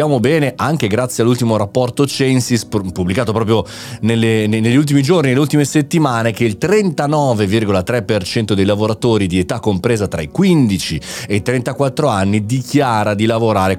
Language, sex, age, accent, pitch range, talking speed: Italian, male, 30-49, native, 110-145 Hz, 145 wpm